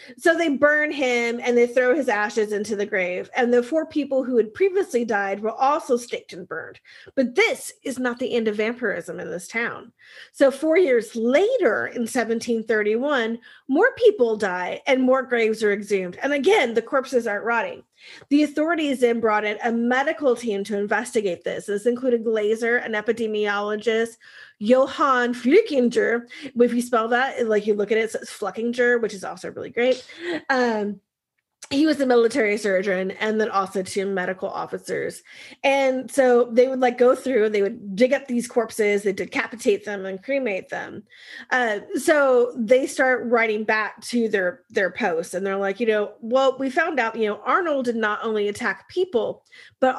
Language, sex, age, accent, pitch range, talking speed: English, female, 30-49, American, 215-270 Hz, 180 wpm